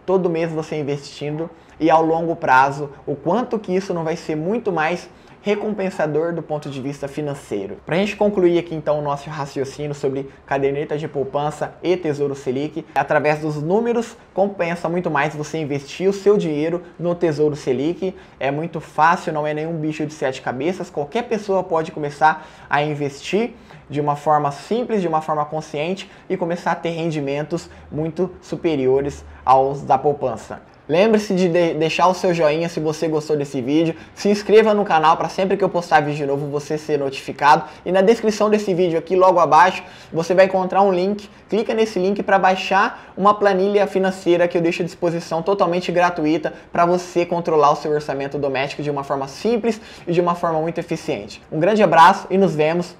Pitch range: 150-185 Hz